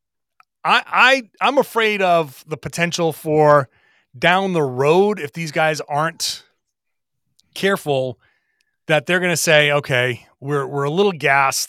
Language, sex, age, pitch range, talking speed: English, male, 30-49, 135-180 Hz, 140 wpm